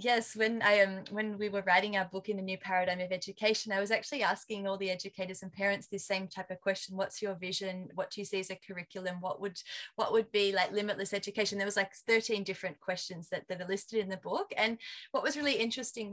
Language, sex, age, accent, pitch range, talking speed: English, female, 20-39, Australian, 190-215 Hz, 250 wpm